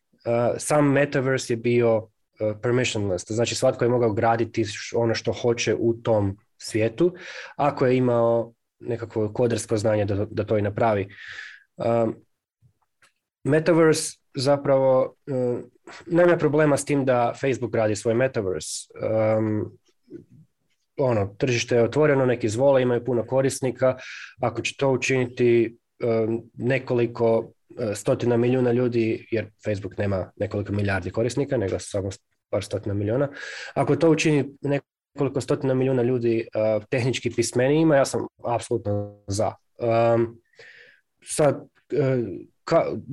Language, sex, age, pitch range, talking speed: Croatian, male, 20-39, 110-135 Hz, 125 wpm